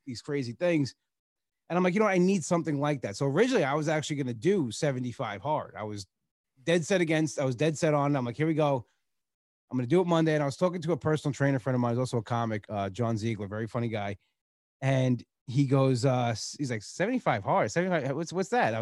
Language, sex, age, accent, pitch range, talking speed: English, male, 30-49, American, 125-165 Hz, 250 wpm